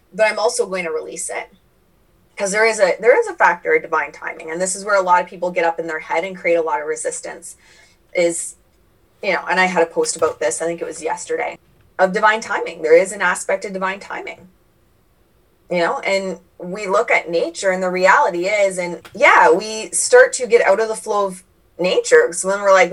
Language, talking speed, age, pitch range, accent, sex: English, 235 wpm, 20-39, 175-250 Hz, American, female